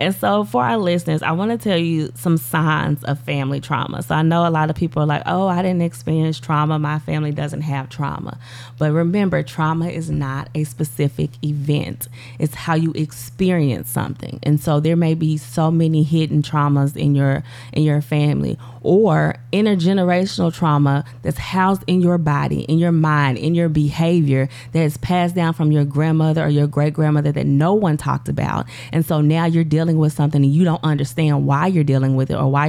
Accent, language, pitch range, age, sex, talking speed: American, English, 140-160 Hz, 20-39, female, 200 wpm